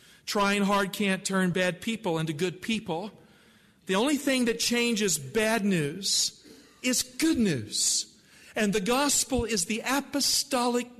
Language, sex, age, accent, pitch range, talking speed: English, male, 50-69, American, 180-225 Hz, 135 wpm